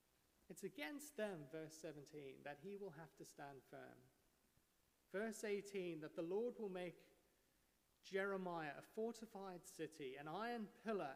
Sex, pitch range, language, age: male, 145-205 Hz, English, 30-49